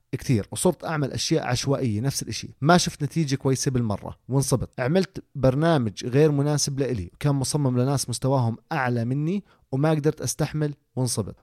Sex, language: male, Arabic